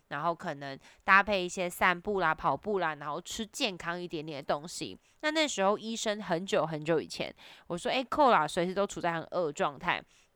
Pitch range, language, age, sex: 180-245 Hz, Chinese, 20-39, female